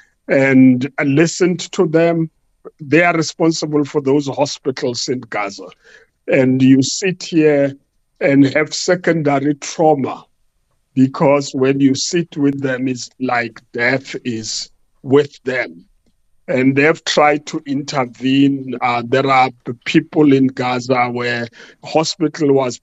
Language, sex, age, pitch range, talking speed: English, male, 50-69, 130-155 Hz, 120 wpm